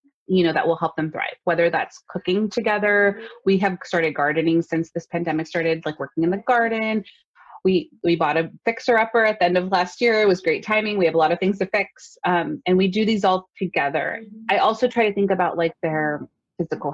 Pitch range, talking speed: 165-205 Hz, 225 wpm